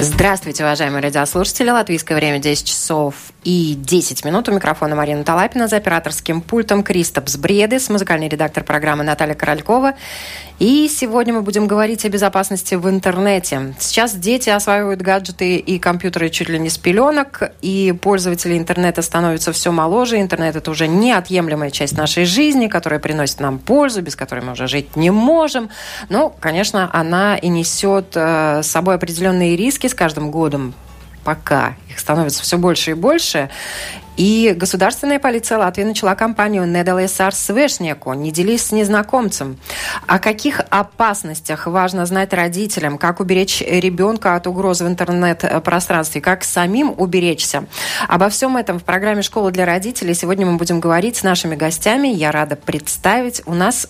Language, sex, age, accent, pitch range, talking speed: Russian, female, 20-39, native, 160-205 Hz, 150 wpm